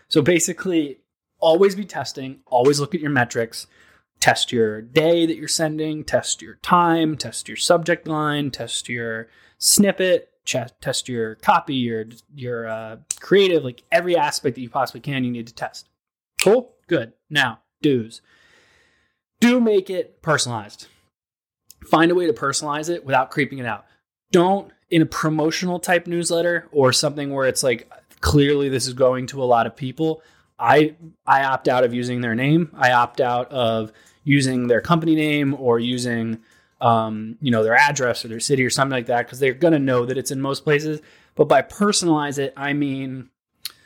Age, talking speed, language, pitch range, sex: 20-39, 175 wpm, English, 120-160 Hz, male